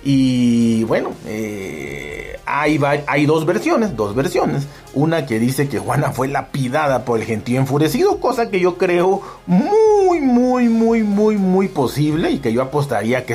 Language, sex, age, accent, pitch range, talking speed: Spanish, male, 40-59, Mexican, 115-150 Hz, 160 wpm